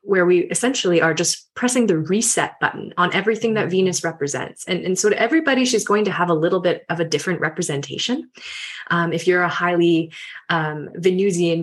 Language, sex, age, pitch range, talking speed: English, female, 20-39, 165-205 Hz, 190 wpm